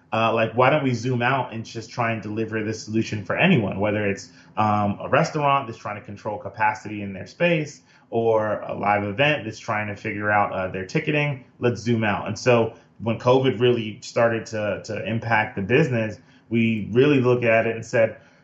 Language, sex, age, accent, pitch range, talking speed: English, male, 20-39, American, 110-135 Hz, 200 wpm